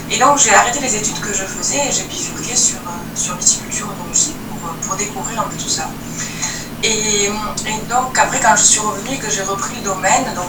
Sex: female